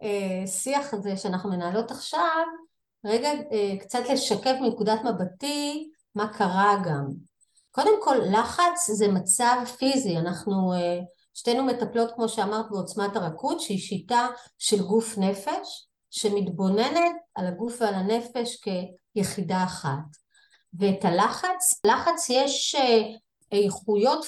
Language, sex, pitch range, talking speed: Hebrew, female, 195-260 Hz, 105 wpm